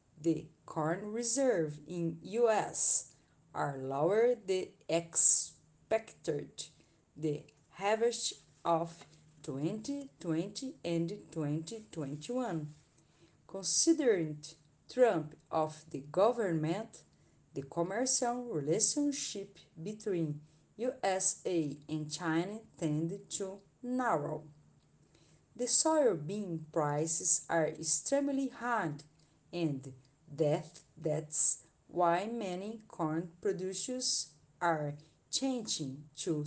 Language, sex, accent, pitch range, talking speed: English, female, Brazilian, 150-205 Hz, 75 wpm